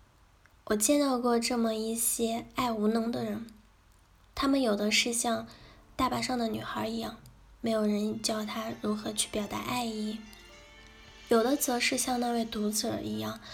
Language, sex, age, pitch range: Chinese, female, 10-29, 215-250 Hz